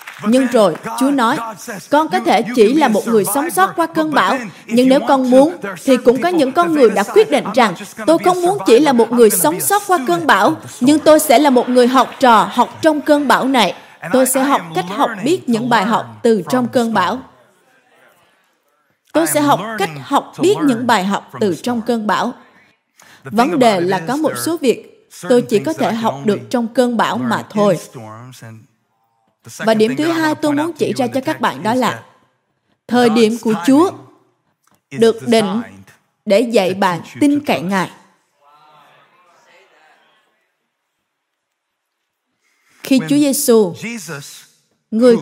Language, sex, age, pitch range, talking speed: Vietnamese, female, 20-39, 205-285 Hz, 170 wpm